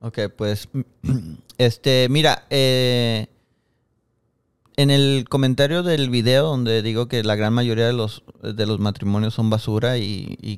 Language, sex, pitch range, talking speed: Spanish, male, 115-140 Hz, 140 wpm